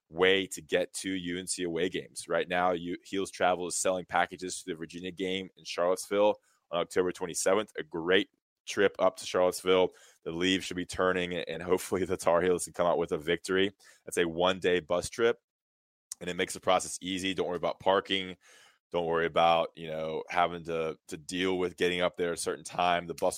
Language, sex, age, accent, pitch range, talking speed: English, male, 20-39, American, 85-95 Hz, 205 wpm